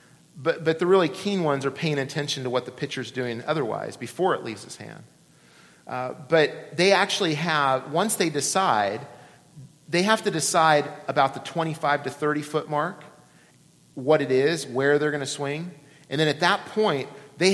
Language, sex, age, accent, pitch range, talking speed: English, male, 40-59, American, 125-160 Hz, 180 wpm